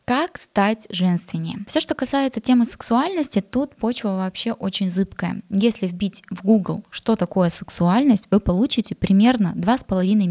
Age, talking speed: 20-39, 140 wpm